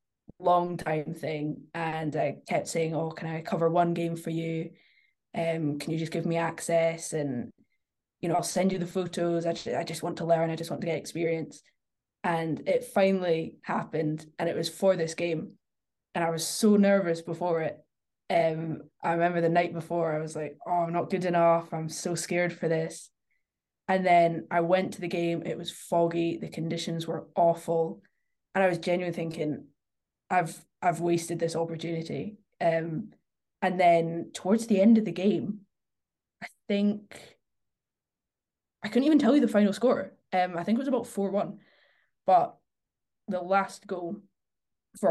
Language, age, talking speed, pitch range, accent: English, 10-29, 180 wpm, 165-185 Hz, British